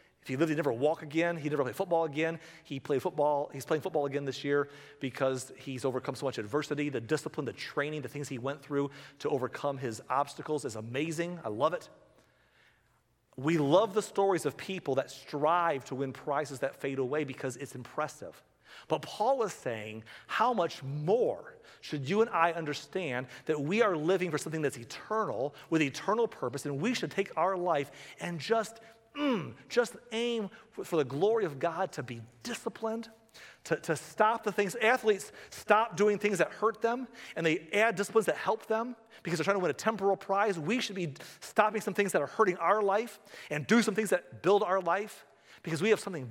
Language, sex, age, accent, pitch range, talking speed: English, male, 40-59, American, 145-210 Hz, 200 wpm